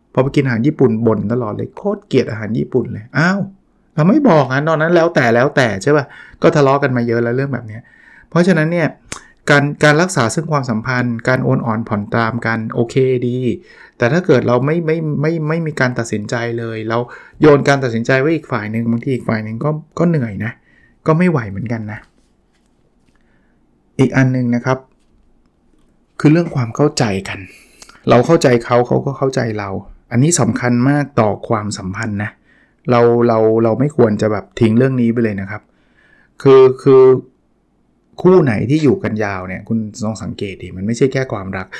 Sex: male